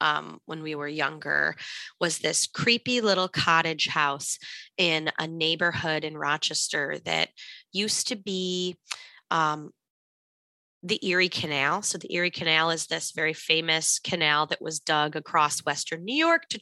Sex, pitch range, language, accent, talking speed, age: female, 160-220 Hz, English, American, 150 wpm, 20-39